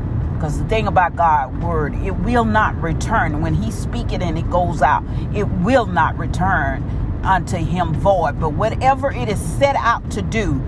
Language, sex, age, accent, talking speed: English, female, 40-59, American, 185 wpm